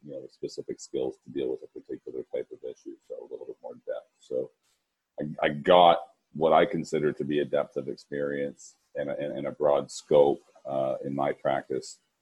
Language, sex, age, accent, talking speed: English, male, 40-59, American, 200 wpm